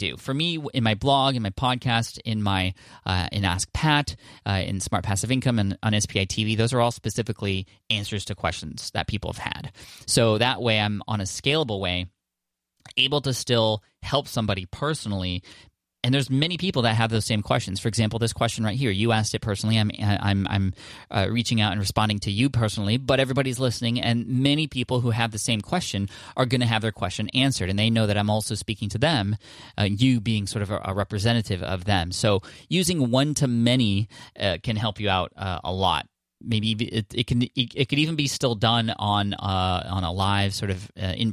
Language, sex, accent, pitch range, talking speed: English, male, American, 100-120 Hz, 210 wpm